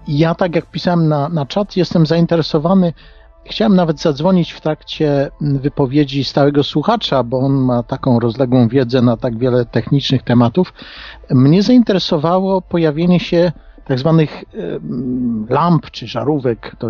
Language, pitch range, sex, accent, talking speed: Polish, 125-165 Hz, male, native, 135 wpm